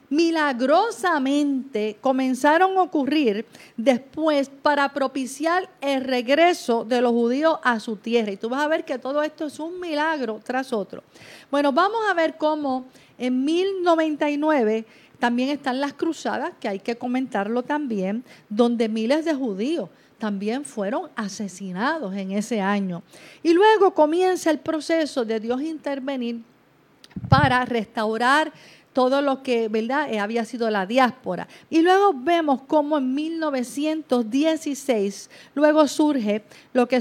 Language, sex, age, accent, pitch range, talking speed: Spanish, female, 40-59, American, 240-315 Hz, 135 wpm